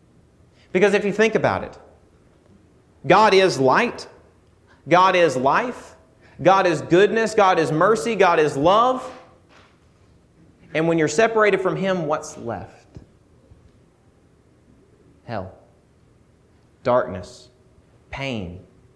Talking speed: 100 wpm